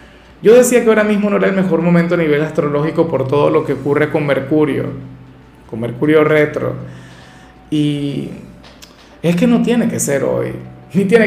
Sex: male